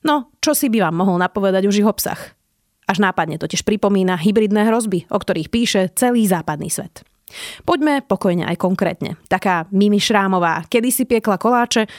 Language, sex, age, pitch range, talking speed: Slovak, female, 30-49, 185-245 Hz, 160 wpm